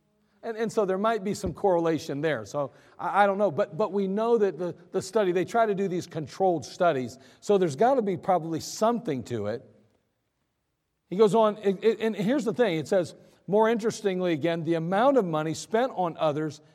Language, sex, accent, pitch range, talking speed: English, male, American, 160-220 Hz, 210 wpm